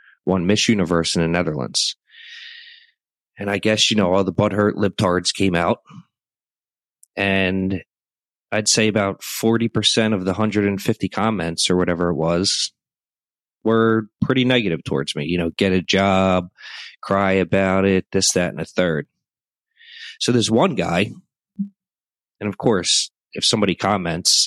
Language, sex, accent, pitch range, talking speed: English, male, American, 90-110 Hz, 140 wpm